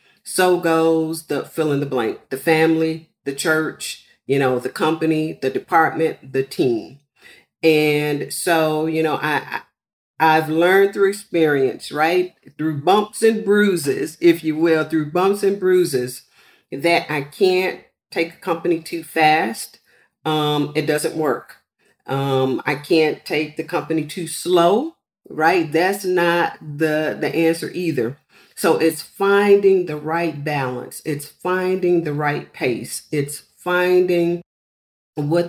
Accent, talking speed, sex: American, 135 wpm, female